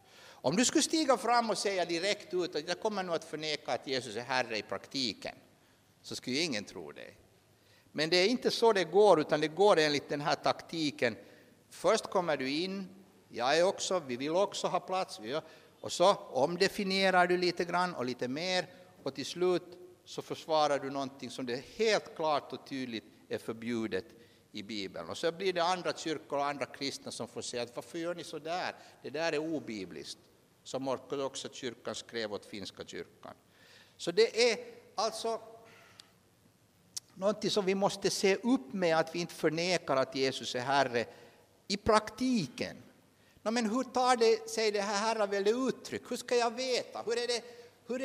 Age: 60-79